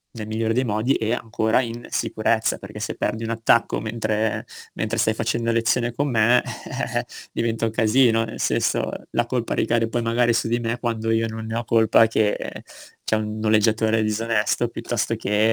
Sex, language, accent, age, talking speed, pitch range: male, Italian, native, 20-39, 180 wpm, 110-125 Hz